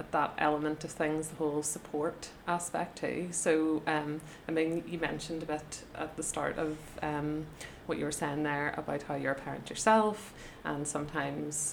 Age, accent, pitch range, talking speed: 30-49, Irish, 150-170 Hz, 180 wpm